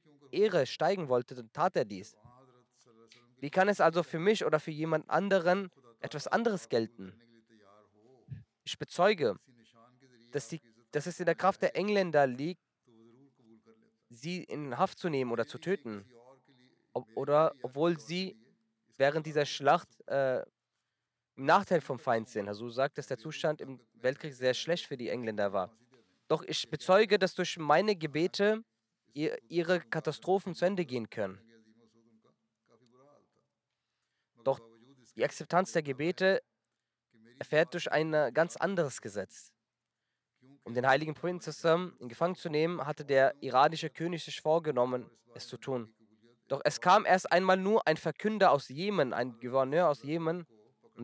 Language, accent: German, German